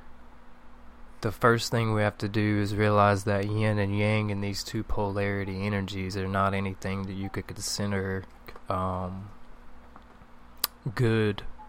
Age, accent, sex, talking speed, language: 20-39, American, male, 140 wpm, English